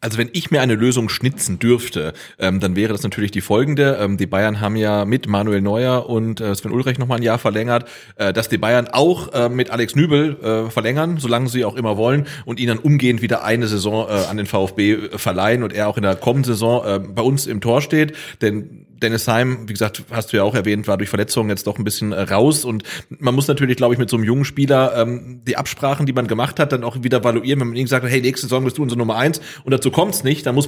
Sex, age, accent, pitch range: male, 30-49, German, 105-125 Hz